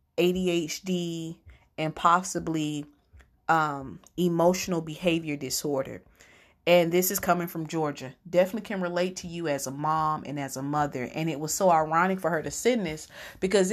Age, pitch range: 30-49, 155-180 Hz